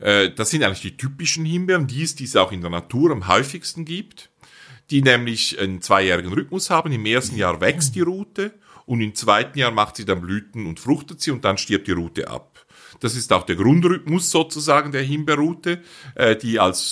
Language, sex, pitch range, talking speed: German, male, 100-160 Hz, 200 wpm